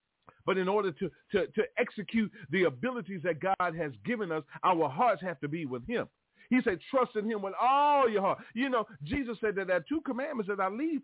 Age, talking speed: 40-59, 230 wpm